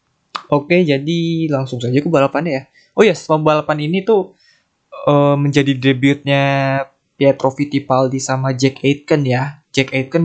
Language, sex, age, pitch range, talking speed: Indonesian, male, 20-39, 130-155 Hz, 140 wpm